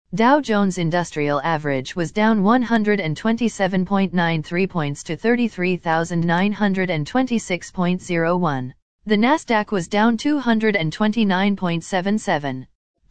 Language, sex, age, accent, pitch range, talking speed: English, female, 40-59, American, 170-220 Hz, 70 wpm